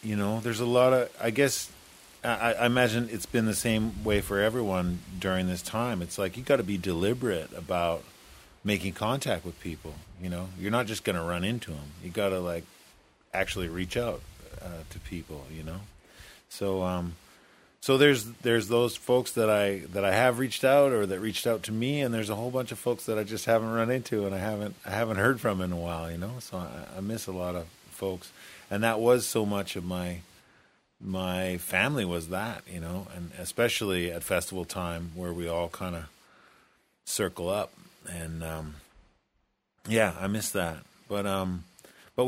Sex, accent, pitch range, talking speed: male, American, 90-115 Hz, 200 wpm